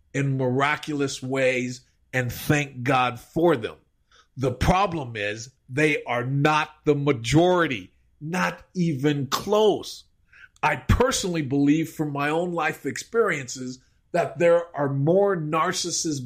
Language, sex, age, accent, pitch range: Japanese, male, 50-69, American, 130-175 Hz